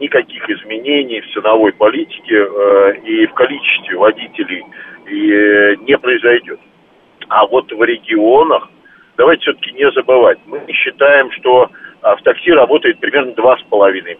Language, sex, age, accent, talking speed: Russian, male, 50-69, native, 130 wpm